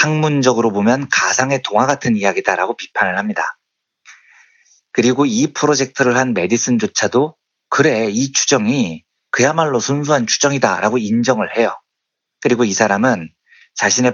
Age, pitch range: 40-59, 110-155 Hz